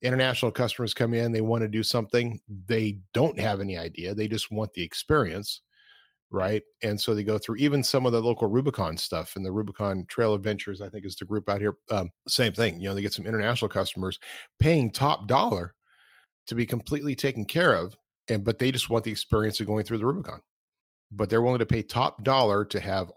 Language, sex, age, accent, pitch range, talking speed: English, male, 40-59, American, 100-115 Hz, 220 wpm